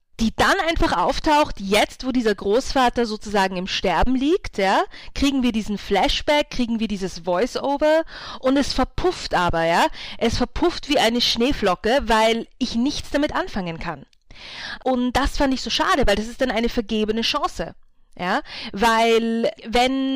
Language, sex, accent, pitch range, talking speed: German, female, German, 215-270 Hz, 160 wpm